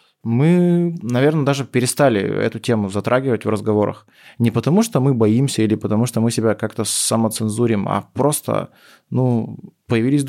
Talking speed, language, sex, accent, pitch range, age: 145 wpm, Russian, male, native, 115-140 Hz, 20-39